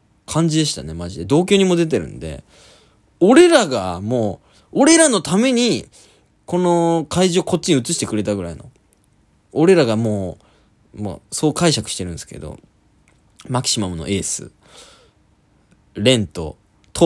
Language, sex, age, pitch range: Japanese, male, 20-39, 90-145 Hz